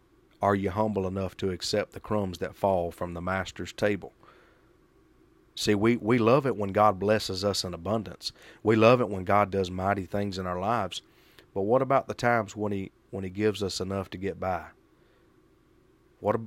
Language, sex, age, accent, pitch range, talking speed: English, male, 30-49, American, 95-110 Hz, 190 wpm